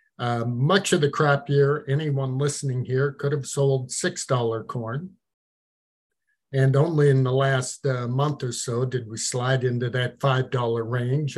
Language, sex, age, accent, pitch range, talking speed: English, male, 50-69, American, 125-150 Hz, 170 wpm